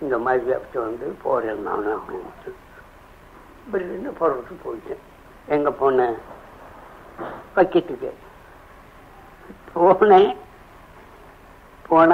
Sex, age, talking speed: female, 60-79, 70 wpm